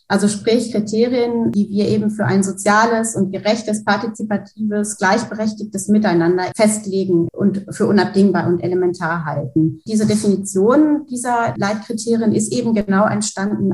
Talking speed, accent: 125 wpm, German